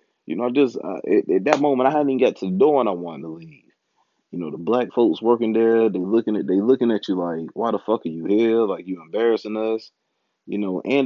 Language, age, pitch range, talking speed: English, 30-49, 100-120 Hz, 255 wpm